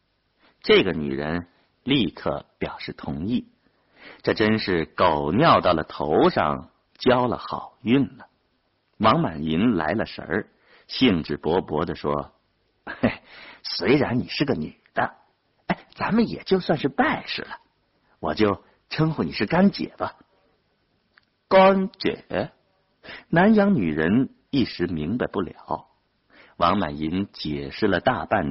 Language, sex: Chinese, male